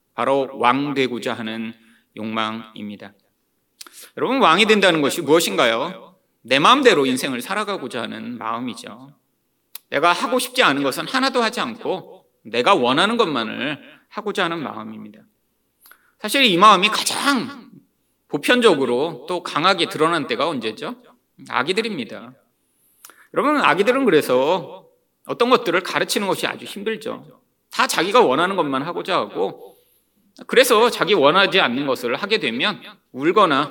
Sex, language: male, Korean